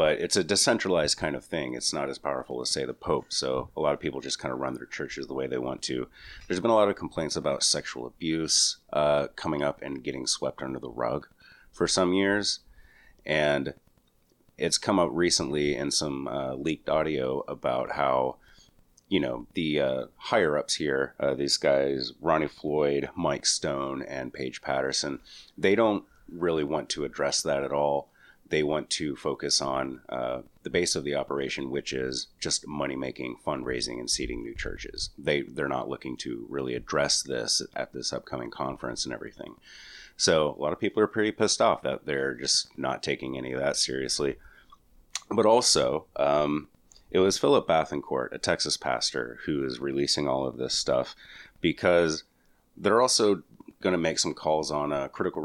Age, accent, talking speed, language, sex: 30-49, American, 185 wpm, English, male